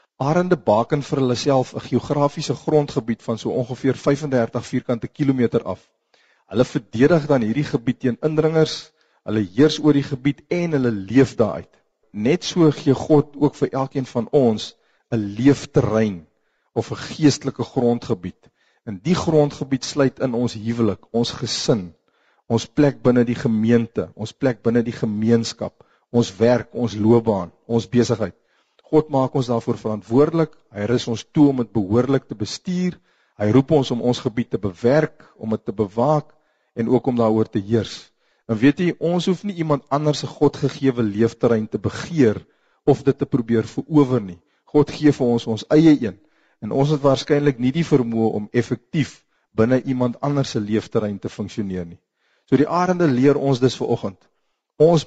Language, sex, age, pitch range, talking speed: Dutch, male, 50-69, 115-145 Hz, 165 wpm